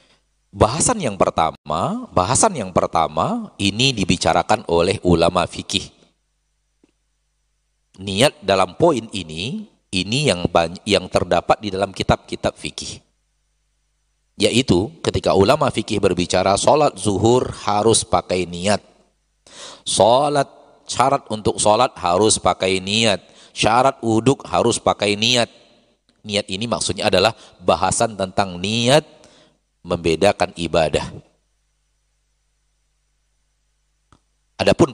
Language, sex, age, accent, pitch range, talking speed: Indonesian, male, 40-59, native, 90-115 Hz, 95 wpm